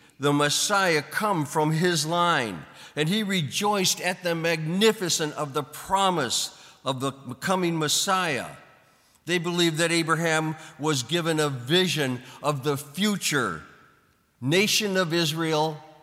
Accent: American